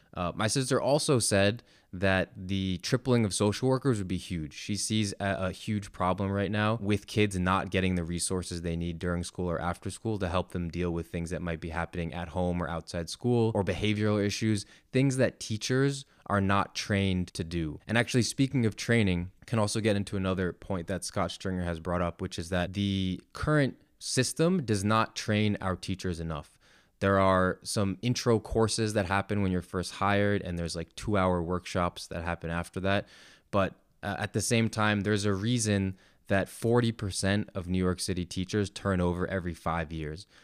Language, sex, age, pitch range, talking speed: English, male, 20-39, 90-105 Hz, 195 wpm